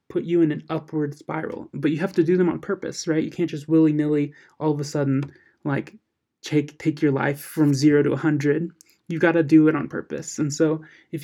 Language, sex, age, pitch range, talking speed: English, male, 20-39, 145-165 Hz, 230 wpm